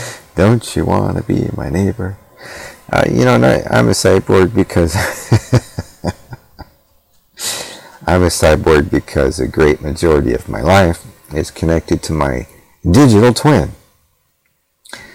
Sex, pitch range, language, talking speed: male, 75-110 Hz, English, 120 wpm